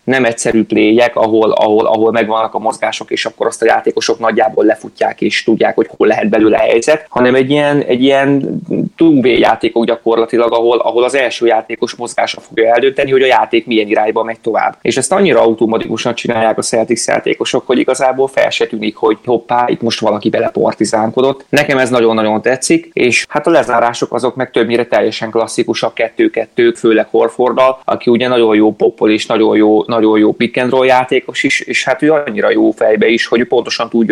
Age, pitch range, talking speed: 20-39, 110-130 Hz, 185 wpm